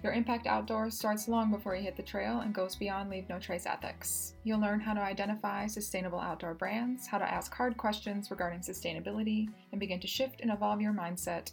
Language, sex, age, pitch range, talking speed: English, female, 20-39, 180-215 Hz, 210 wpm